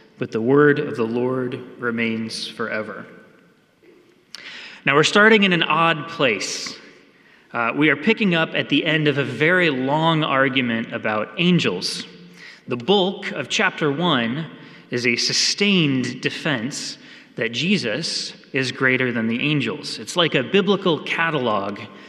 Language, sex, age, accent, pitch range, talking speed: English, male, 30-49, American, 125-195 Hz, 140 wpm